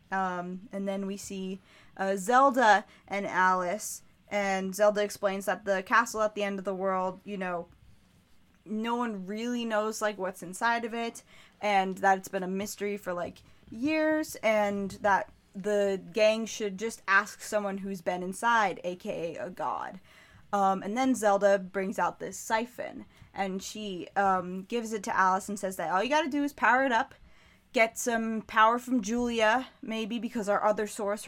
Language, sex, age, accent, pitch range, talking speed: English, female, 20-39, American, 190-230 Hz, 175 wpm